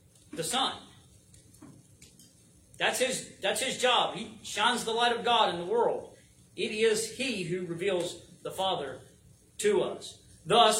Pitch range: 160-220 Hz